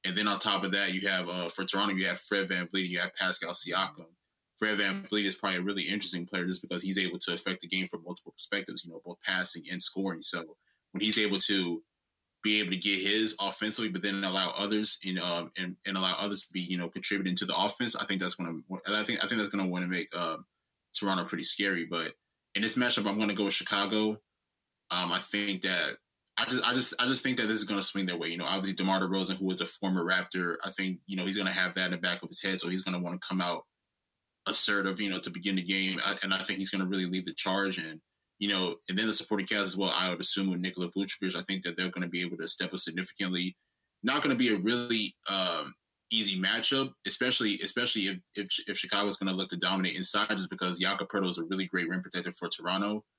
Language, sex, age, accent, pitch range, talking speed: English, male, 20-39, American, 90-100 Hz, 260 wpm